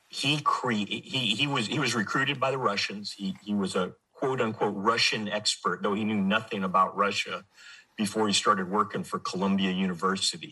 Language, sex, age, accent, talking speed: English, male, 50-69, American, 185 wpm